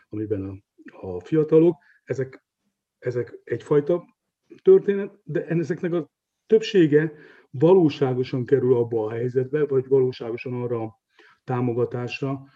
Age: 40-59